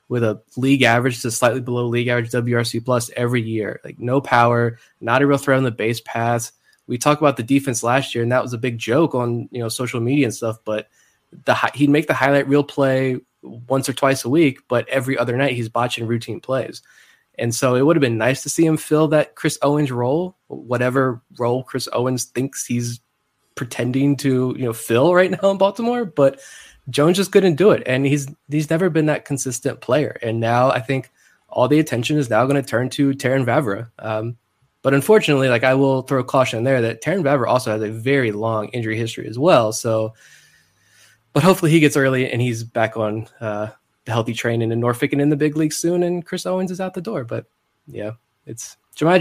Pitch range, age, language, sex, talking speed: 120-140 Hz, 20-39, English, male, 215 wpm